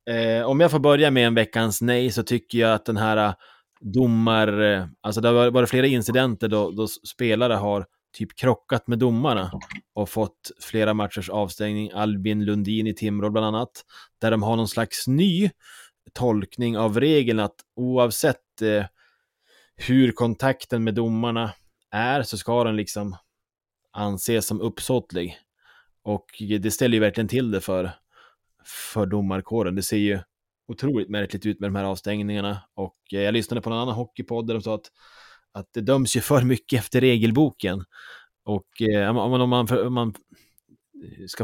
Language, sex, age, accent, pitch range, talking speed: Swedish, male, 20-39, Norwegian, 105-120 Hz, 160 wpm